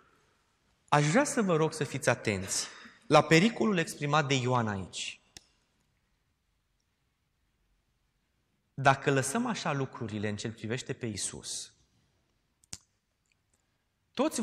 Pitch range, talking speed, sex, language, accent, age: 110-140 Hz, 100 wpm, male, Romanian, native, 30-49